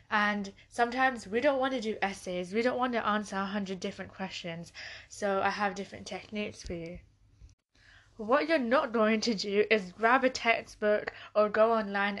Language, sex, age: English, female, 20-39